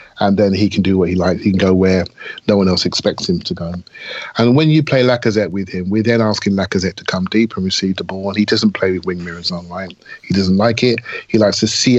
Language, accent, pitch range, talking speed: English, British, 95-115 Hz, 275 wpm